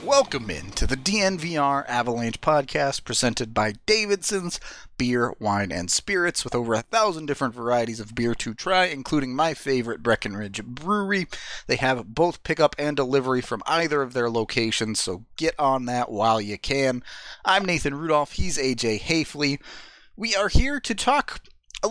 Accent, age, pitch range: American, 30-49, 115-160 Hz